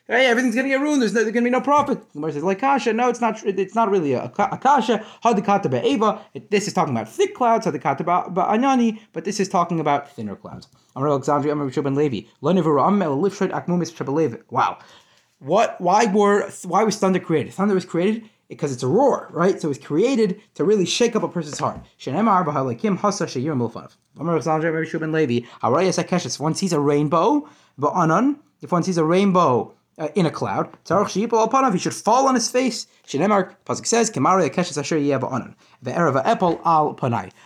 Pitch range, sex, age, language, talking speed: 150-230 Hz, male, 30-49, English, 155 wpm